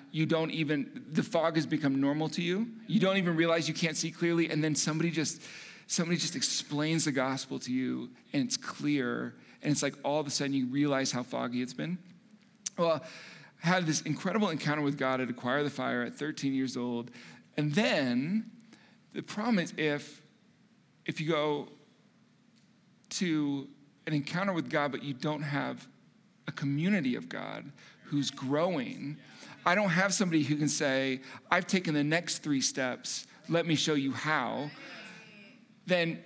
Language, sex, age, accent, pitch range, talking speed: English, male, 40-59, American, 140-195 Hz, 170 wpm